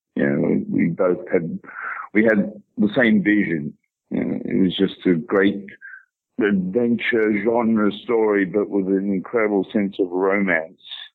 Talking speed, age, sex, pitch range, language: 145 wpm, 60-79, male, 90-105 Hz, English